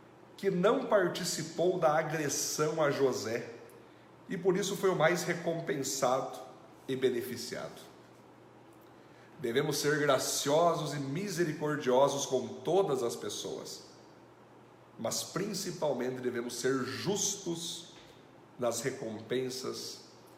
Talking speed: 95 wpm